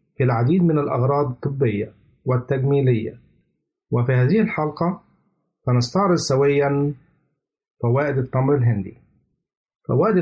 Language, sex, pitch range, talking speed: Arabic, male, 125-160 Hz, 80 wpm